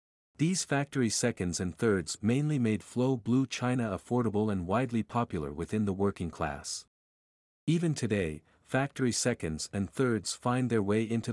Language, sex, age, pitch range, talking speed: English, male, 50-69, 95-125 Hz, 150 wpm